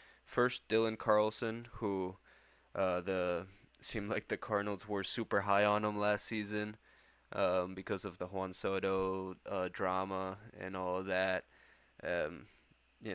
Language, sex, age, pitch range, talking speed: English, male, 20-39, 95-110 Hz, 140 wpm